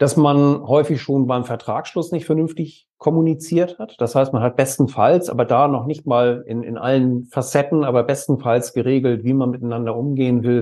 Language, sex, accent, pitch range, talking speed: German, male, German, 115-135 Hz, 180 wpm